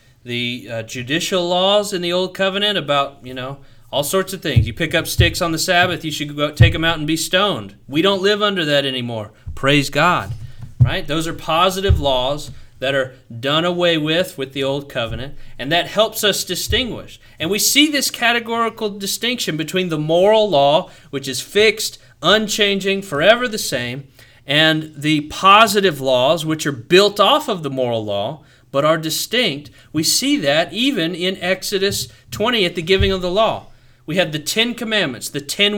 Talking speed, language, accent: 185 wpm, English, American